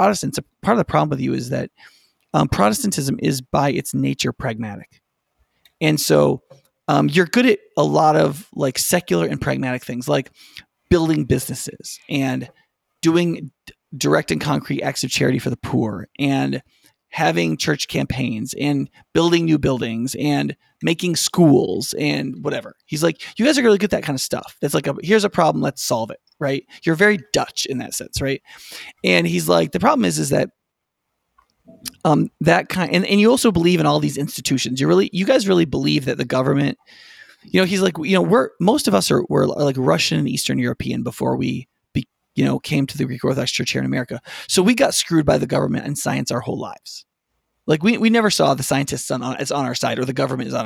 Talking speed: 205 wpm